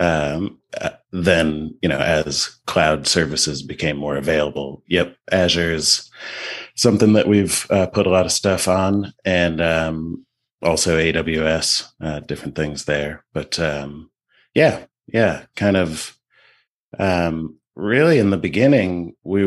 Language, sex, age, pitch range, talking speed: English, male, 30-49, 80-100 Hz, 135 wpm